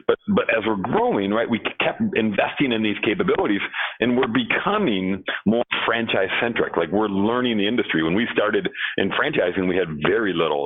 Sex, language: male, English